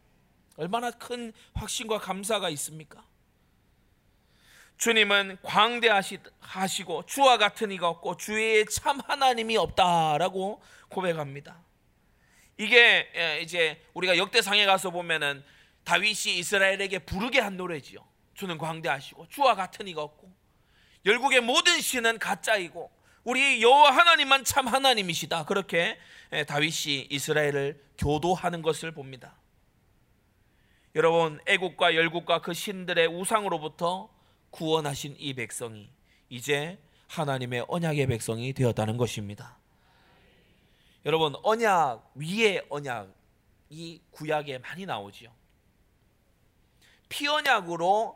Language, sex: Korean, male